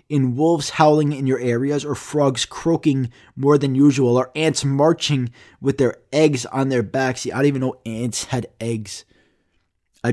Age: 20-39